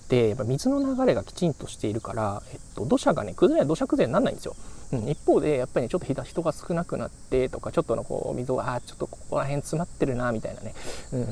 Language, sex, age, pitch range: Japanese, male, 20-39, 105-155 Hz